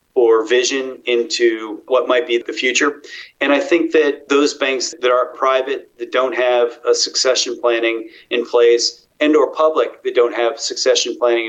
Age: 40-59